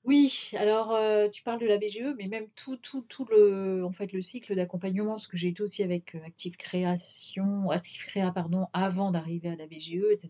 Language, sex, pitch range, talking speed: French, female, 175-220 Hz, 210 wpm